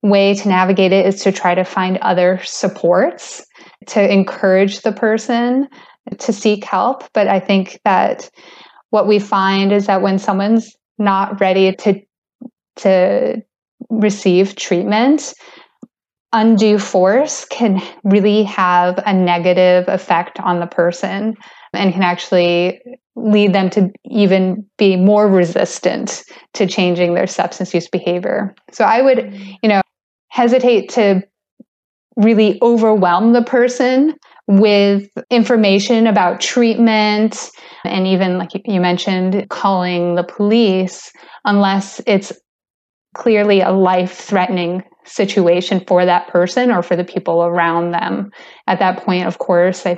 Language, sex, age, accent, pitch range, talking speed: English, female, 20-39, American, 180-215 Hz, 125 wpm